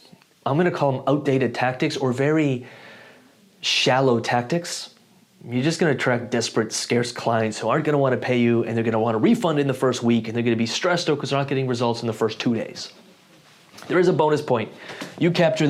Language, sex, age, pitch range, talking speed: English, male, 30-49, 115-145 Hz, 215 wpm